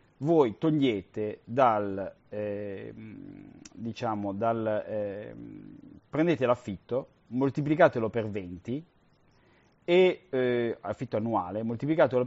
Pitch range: 110-140 Hz